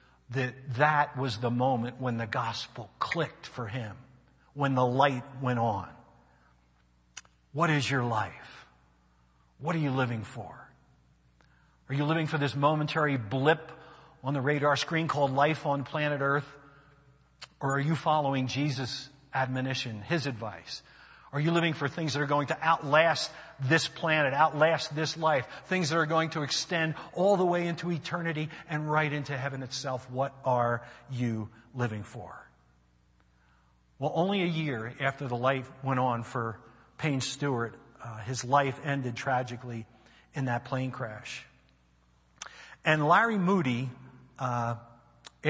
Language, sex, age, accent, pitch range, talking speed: English, male, 50-69, American, 120-150 Hz, 145 wpm